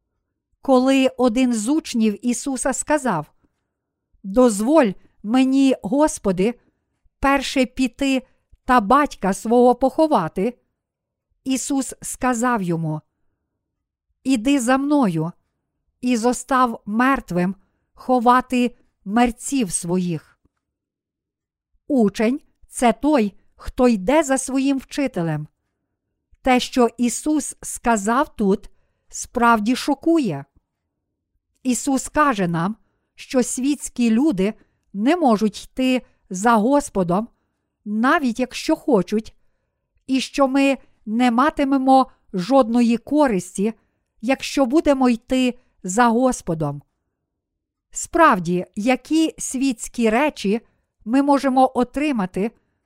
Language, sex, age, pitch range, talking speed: Ukrainian, female, 50-69, 210-270 Hz, 85 wpm